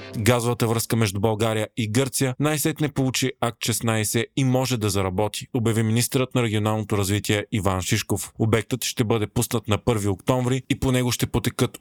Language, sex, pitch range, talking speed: Bulgarian, male, 105-130 Hz, 175 wpm